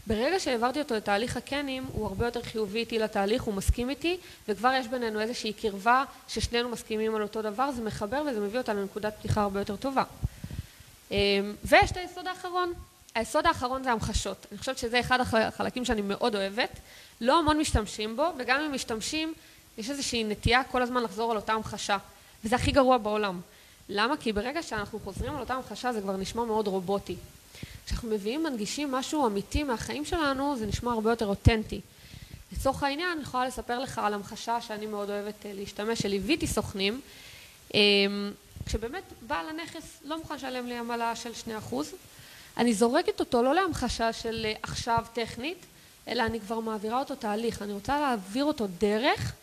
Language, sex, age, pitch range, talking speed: Hebrew, female, 20-39, 215-275 Hz, 170 wpm